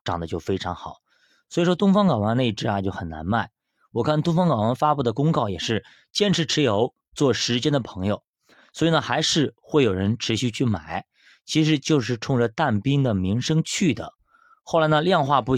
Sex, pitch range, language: male, 110-160 Hz, Chinese